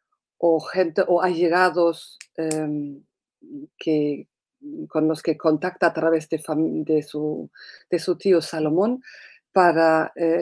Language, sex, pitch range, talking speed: Spanish, female, 160-190 Hz, 125 wpm